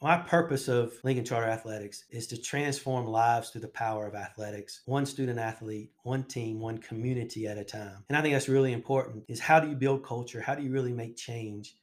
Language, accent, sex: English, American, male